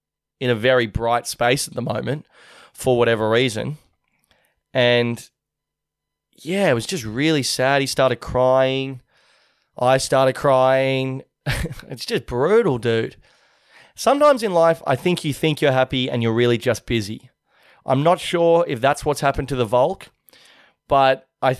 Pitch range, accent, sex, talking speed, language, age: 125-150 Hz, Australian, male, 150 wpm, English, 20-39